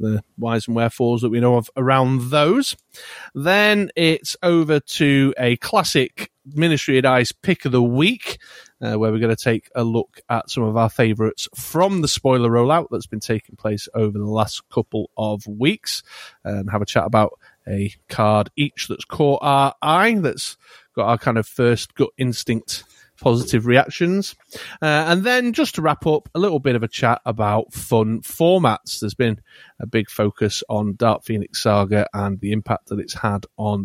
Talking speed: 185 wpm